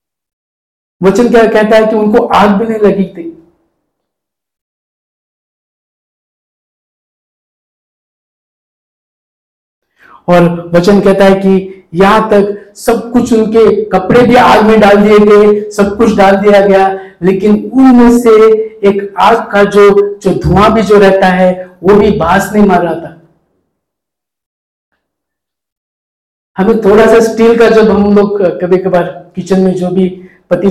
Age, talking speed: 50-69, 130 wpm